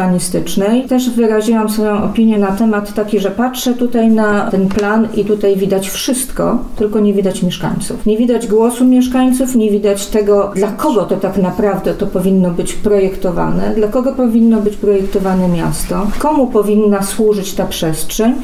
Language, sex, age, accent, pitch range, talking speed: Polish, female, 40-59, native, 200-245 Hz, 160 wpm